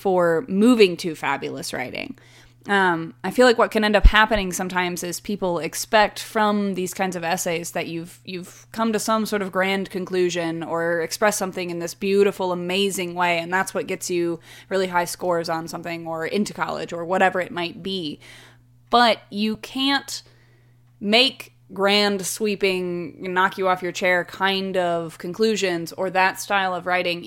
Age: 20-39